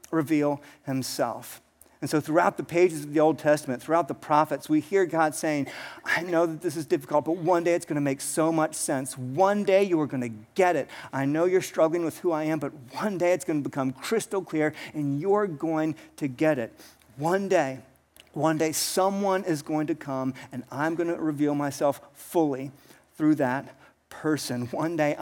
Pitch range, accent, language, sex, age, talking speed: 135-165 Hz, American, English, male, 50-69, 205 wpm